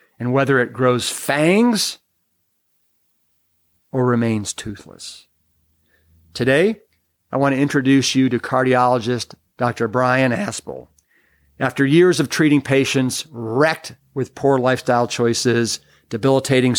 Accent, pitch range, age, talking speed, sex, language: American, 115-140 Hz, 50-69, 105 wpm, male, English